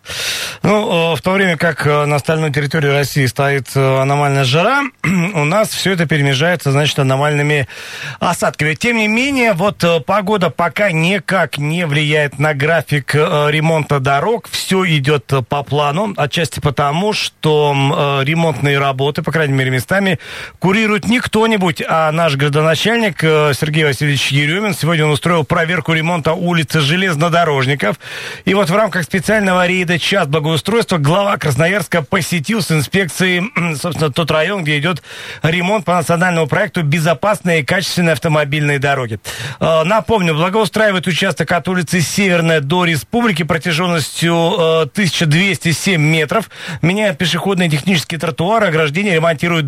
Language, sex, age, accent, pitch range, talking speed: Russian, male, 40-59, native, 150-185 Hz, 130 wpm